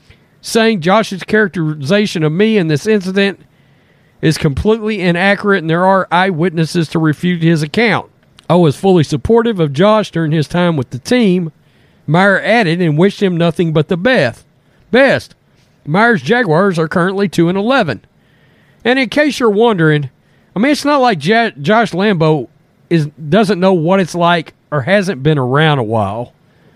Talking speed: 165 wpm